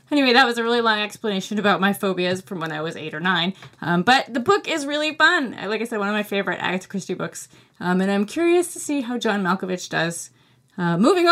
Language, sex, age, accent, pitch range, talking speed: English, female, 20-39, American, 180-225 Hz, 240 wpm